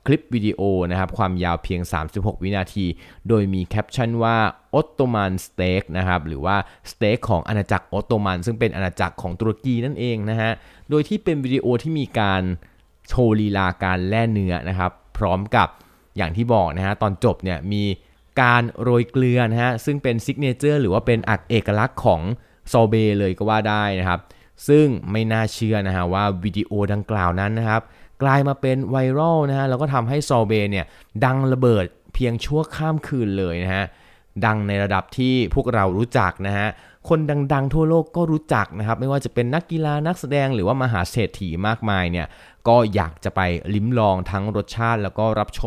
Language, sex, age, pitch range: Thai, male, 20-39, 95-125 Hz